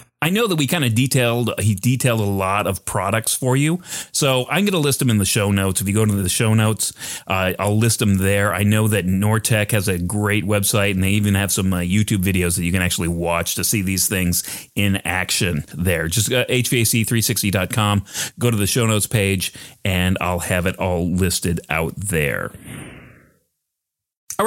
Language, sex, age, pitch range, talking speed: English, male, 30-49, 95-115 Hz, 205 wpm